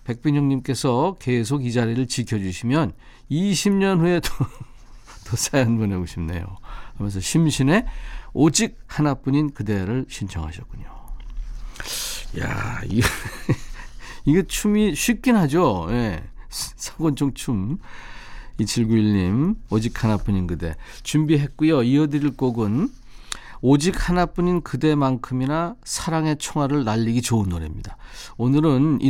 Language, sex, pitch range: Korean, male, 110-160 Hz